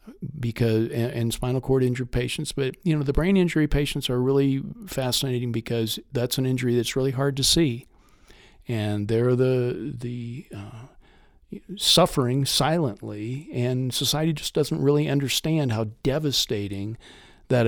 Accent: American